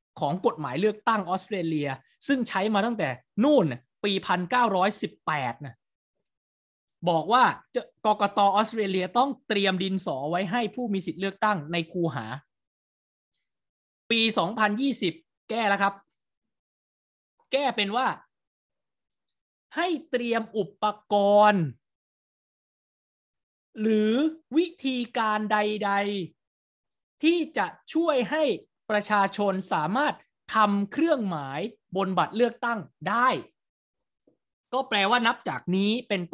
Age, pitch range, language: 20-39, 165-230 Hz, Thai